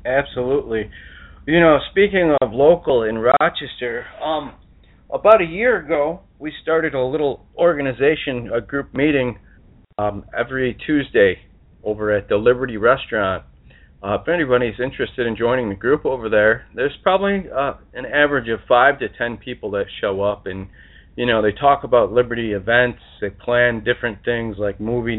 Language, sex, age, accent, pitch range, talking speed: English, male, 40-59, American, 100-120 Hz, 155 wpm